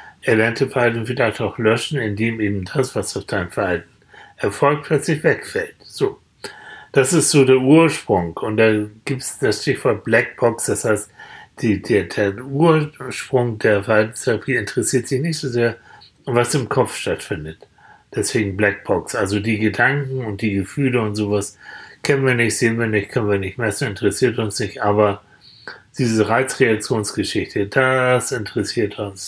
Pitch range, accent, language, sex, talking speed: 105-135 Hz, German, German, male, 150 wpm